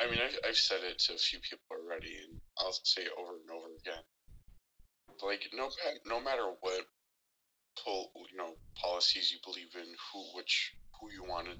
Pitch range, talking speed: 70-95 Hz, 185 wpm